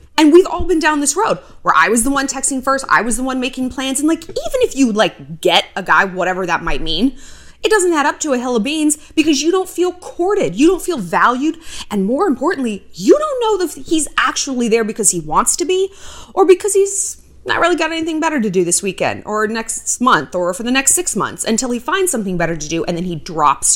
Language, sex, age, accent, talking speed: English, female, 20-39, American, 250 wpm